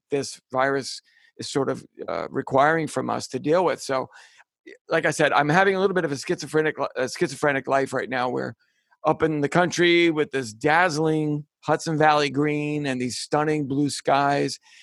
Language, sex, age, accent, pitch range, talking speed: English, male, 50-69, American, 140-180 Hz, 180 wpm